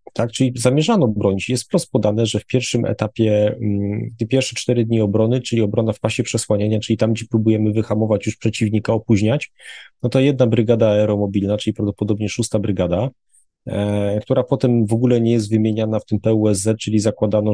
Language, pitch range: Polish, 105-130 Hz